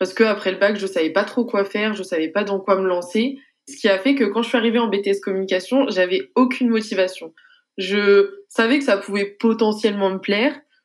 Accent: French